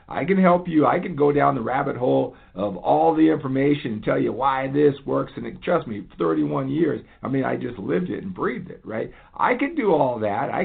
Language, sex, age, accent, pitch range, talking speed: English, male, 50-69, American, 105-145 Hz, 235 wpm